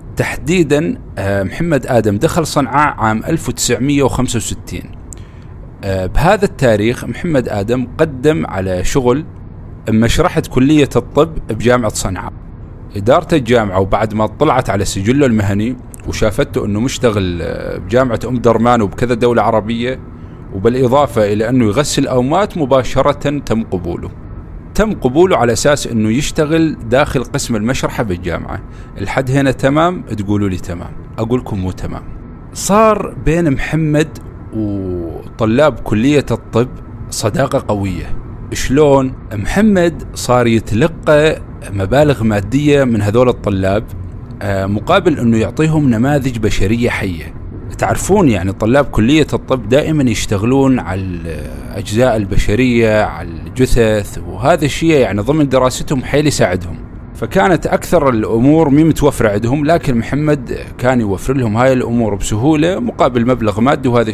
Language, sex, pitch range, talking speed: Arabic, male, 105-140 Hz, 115 wpm